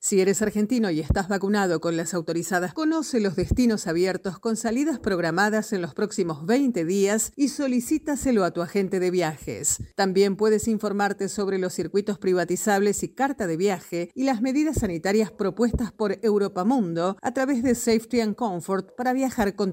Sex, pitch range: female, 175-225 Hz